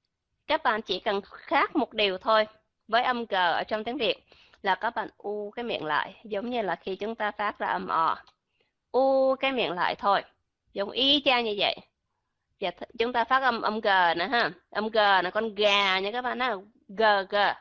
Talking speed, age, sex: 210 wpm, 20-39, female